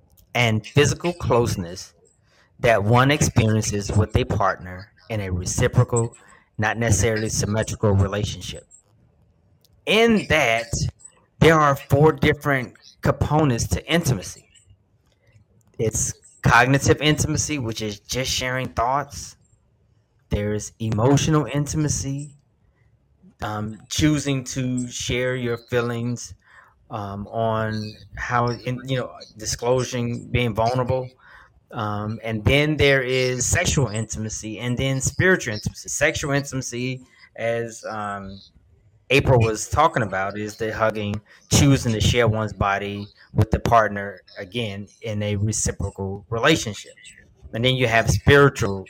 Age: 30-49